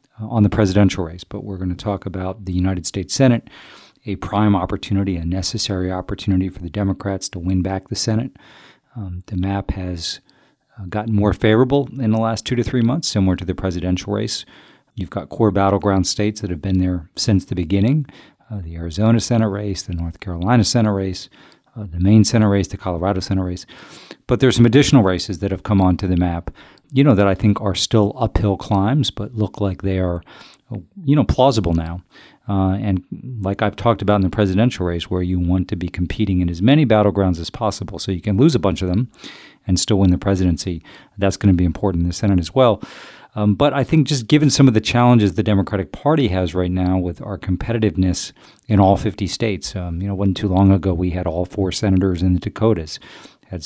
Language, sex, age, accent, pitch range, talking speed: English, male, 40-59, American, 90-110 Hz, 215 wpm